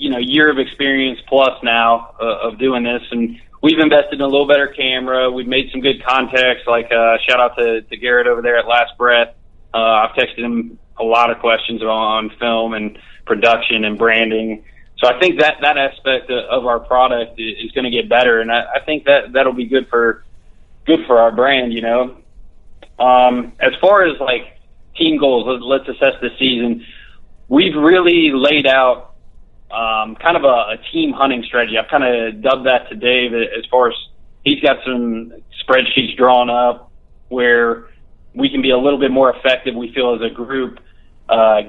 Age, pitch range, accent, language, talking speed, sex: 20-39, 115-135 Hz, American, English, 195 wpm, male